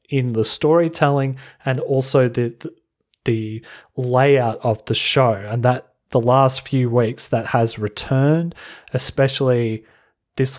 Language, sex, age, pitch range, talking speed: English, male, 30-49, 115-140 Hz, 125 wpm